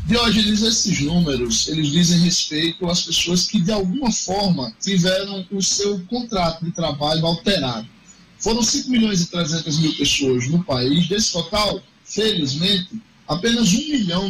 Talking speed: 150 wpm